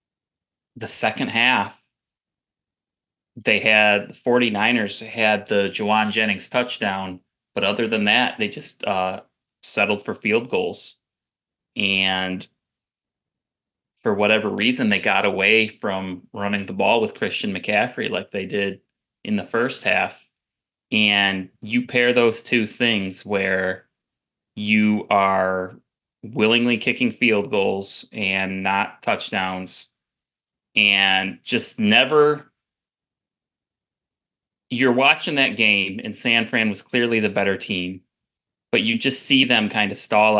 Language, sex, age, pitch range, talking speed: English, male, 20-39, 100-120 Hz, 125 wpm